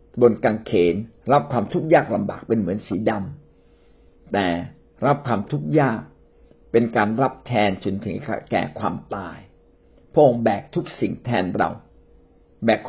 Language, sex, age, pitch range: Thai, male, 60-79, 95-135 Hz